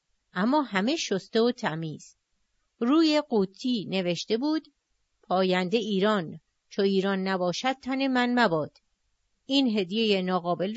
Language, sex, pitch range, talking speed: Persian, female, 200-270 Hz, 110 wpm